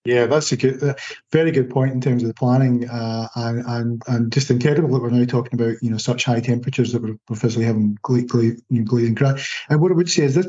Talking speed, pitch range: 250 wpm, 120-140 Hz